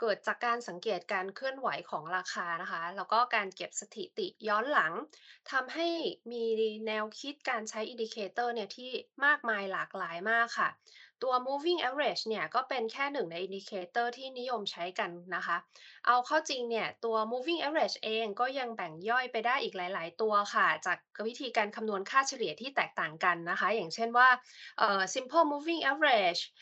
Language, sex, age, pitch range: Thai, female, 20-39, 205-265 Hz